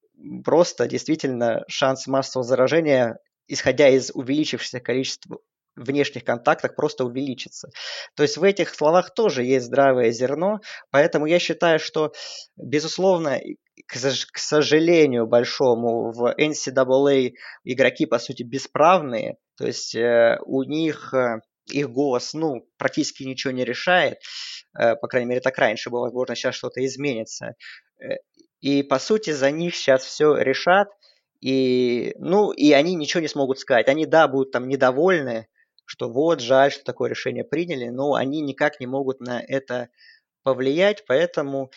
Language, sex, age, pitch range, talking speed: Russian, male, 20-39, 125-160 Hz, 135 wpm